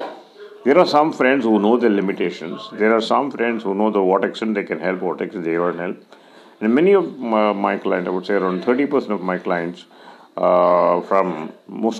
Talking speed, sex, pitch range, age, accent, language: 210 wpm, male, 95-135 Hz, 50-69, Indian, English